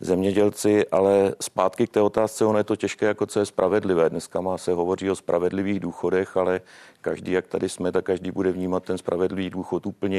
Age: 40-59